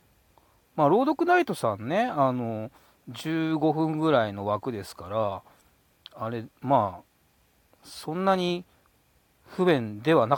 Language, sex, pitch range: Japanese, male, 105-160 Hz